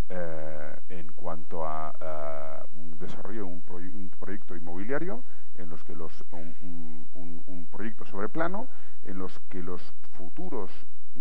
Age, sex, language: 40-59, male, Spanish